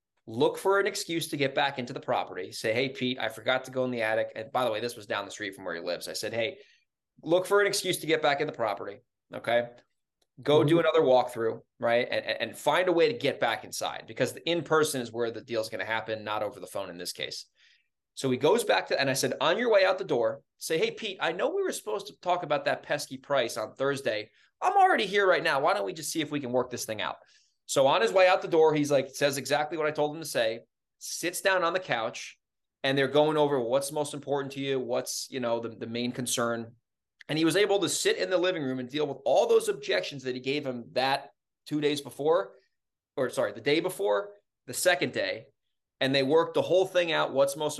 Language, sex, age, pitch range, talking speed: English, male, 20-39, 120-165 Hz, 255 wpm